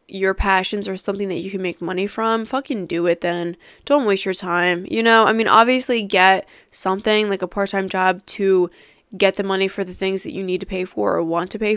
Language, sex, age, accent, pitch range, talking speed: English, female, 20-39, American, 185-225 Hz, 235 wpm